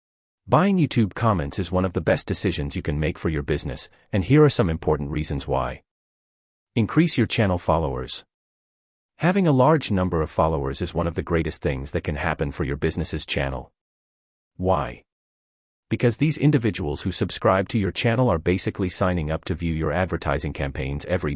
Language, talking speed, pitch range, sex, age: English, 180 wpm, 75-110 Hz, male, 30-49